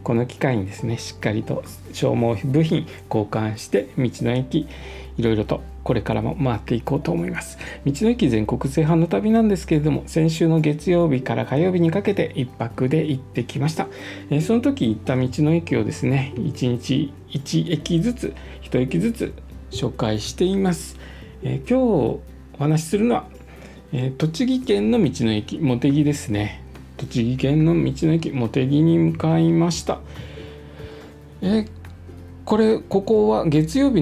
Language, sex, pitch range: Japanese, male, 115-165 Hz